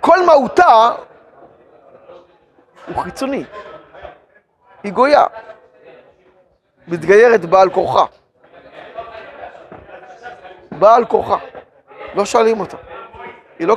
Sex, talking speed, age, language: male, 70 wpm, 40-59, Hebrew